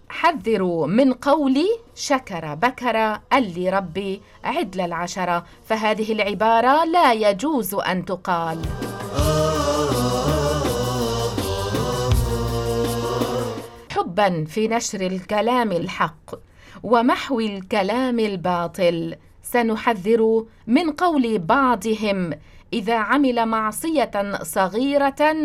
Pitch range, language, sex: 180-265 Hz, English, female